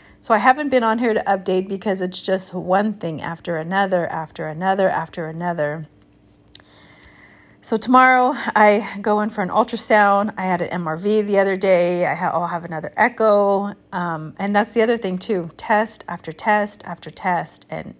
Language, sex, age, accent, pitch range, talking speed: English, female, 30-49, American, 180-225 Hz, 175 wpm